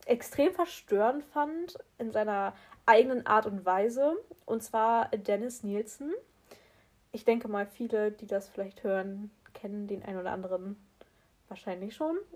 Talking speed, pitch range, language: 135 wpm, 210-265 Hz, German